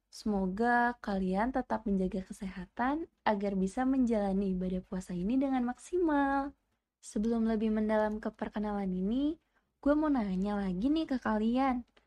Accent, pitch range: native, 205-260 Hz